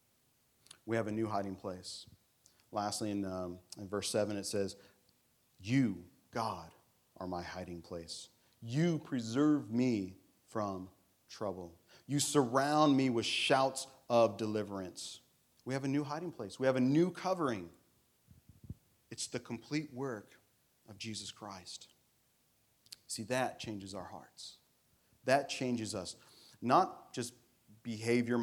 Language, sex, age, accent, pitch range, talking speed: English, male, 40-59, American, 100-130 Hz, 130 wpm